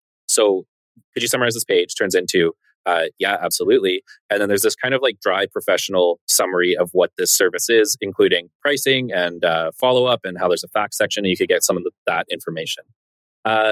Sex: male